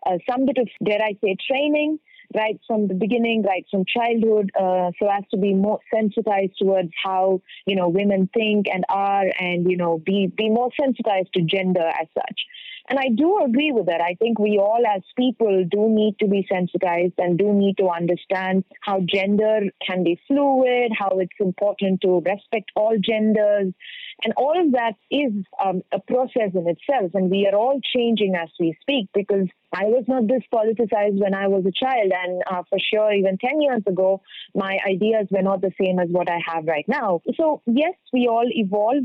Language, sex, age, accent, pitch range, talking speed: English, female, 30-49, Indian, 190-245 Hz, 200 wpm